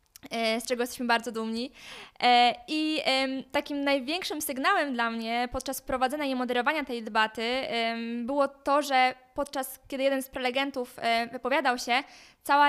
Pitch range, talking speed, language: 240-280 Hz, 130 wpm, Polish